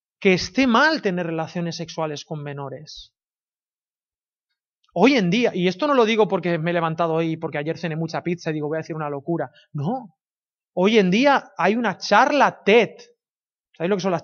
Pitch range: 170-230 Hz